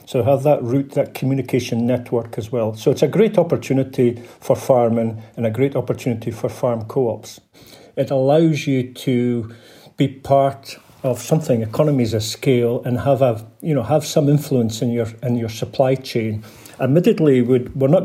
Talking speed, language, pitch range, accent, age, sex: 175 wpm, English, 120-145 Hz, British, 50-69, male